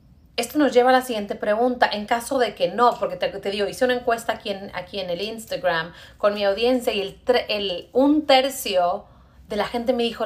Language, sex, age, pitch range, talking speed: English, female, 30-49, 195-265 Hz, 205 wpm